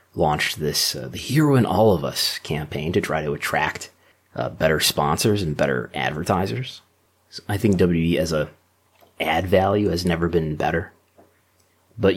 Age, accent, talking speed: 30-49, American, 165 wpm